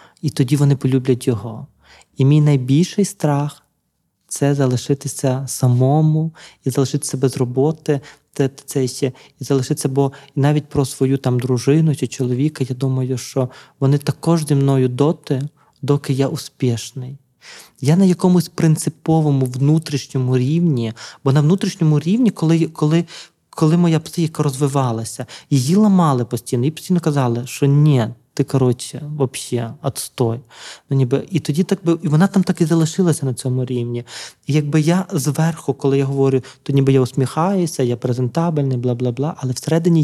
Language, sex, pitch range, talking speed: Ukrainian, male, 130-155 Hz, 150 wpm